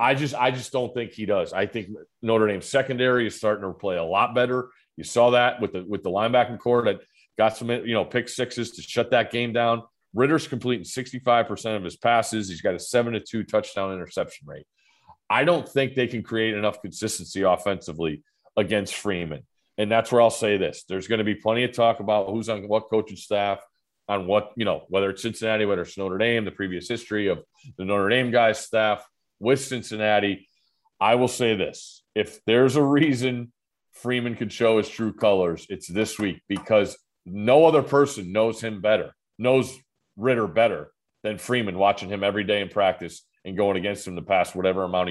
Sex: male